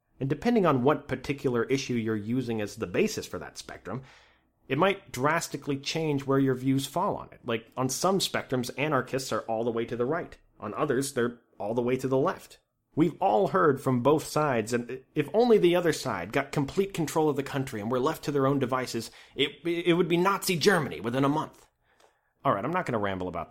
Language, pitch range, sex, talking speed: English, 120-150 Hz, male, 220 wpm